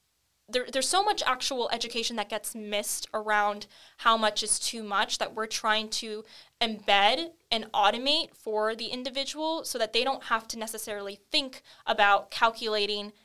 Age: 10-29